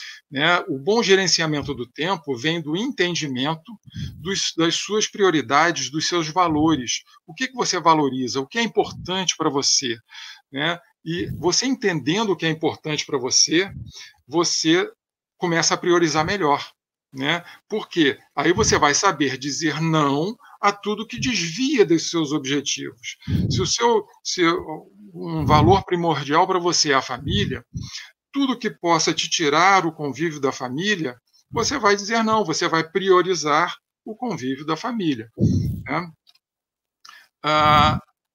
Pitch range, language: 145-195 Hz, Portuguese